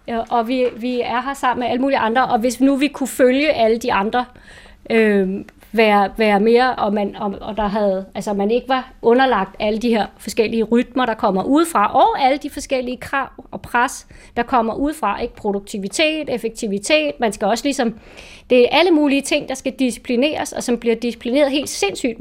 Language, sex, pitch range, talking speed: Danish, female, 230-295 Hz, 185 wpm